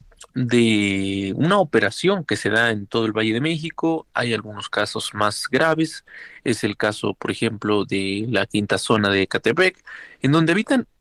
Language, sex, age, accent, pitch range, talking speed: Spanish, male, 30-49, Mexican, 110-145 Hz, 170 wpm